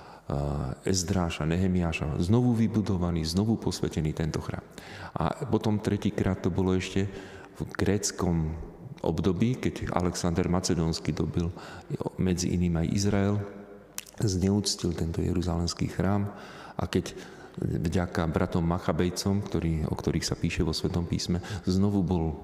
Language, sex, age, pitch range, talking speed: Slovak, male, 40-59, 85-100 Hz, 120 wpm